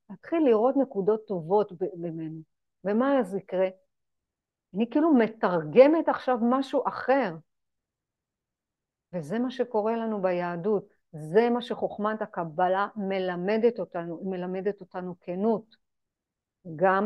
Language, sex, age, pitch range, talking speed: Hebrew, female, 50-69, 185-240 Hz, 110 wpm